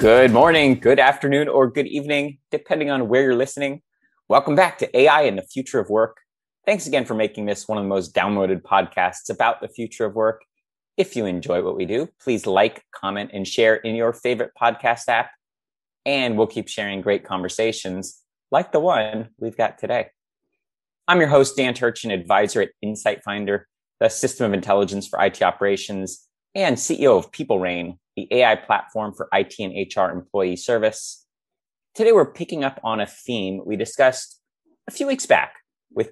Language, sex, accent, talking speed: English, male, American, 180 wpm